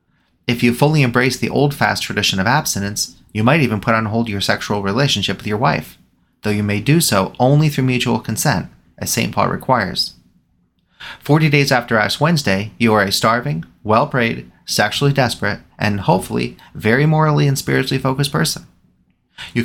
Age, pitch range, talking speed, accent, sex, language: 30-49, 100-140 Hz, 170 wpm, American, male, English